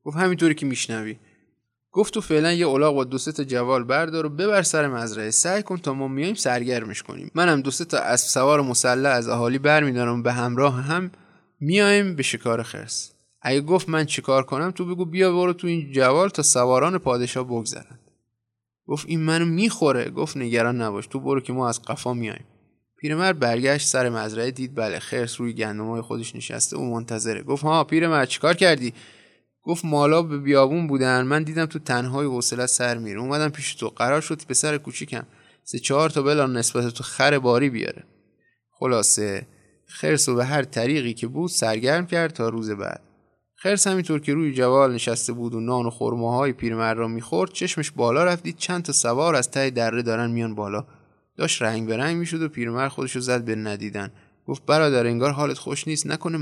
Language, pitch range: Persian, 120-155 Hz